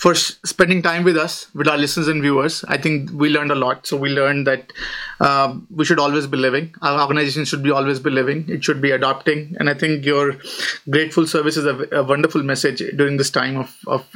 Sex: male